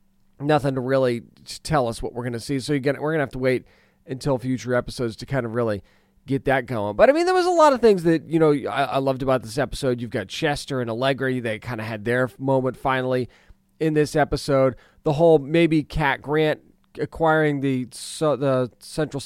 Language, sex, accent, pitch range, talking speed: English, male, American, 130-170 Hz, 215 wpm